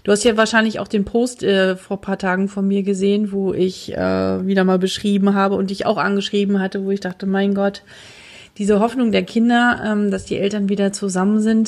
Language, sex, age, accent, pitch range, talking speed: German, female, 40-59, German, 195-225 Hz, 220 wpm